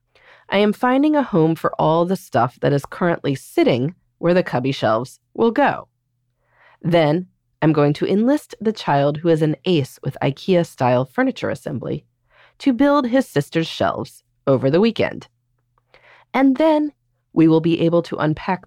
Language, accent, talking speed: English, American, 160 wpm